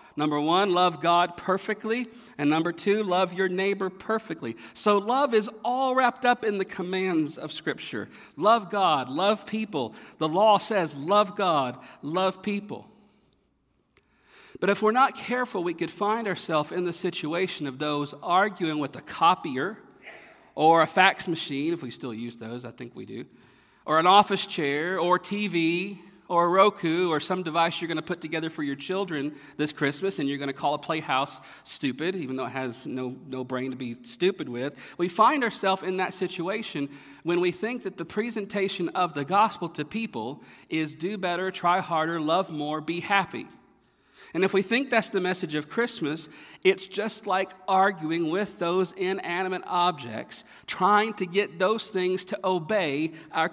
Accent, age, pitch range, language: American, 50-69, 150-200 Hz, English